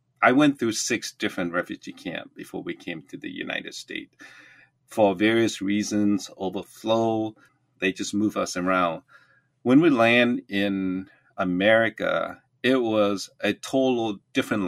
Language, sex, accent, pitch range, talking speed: English, male, American, 100-125 Hz, 135 wpm